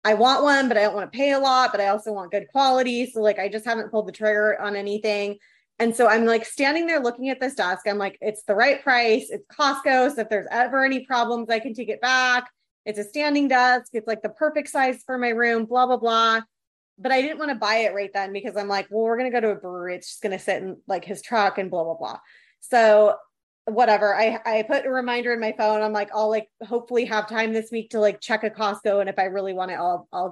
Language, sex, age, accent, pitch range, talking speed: English, female, 20-39, American, 210-250 Hz, 270 wpm